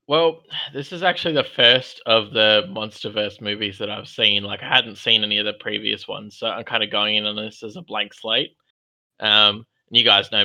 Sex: male